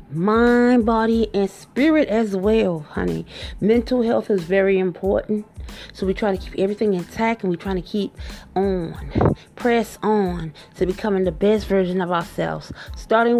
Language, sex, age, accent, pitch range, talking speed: English, female, 30-49, American, 180-235 Hz, 155 wpm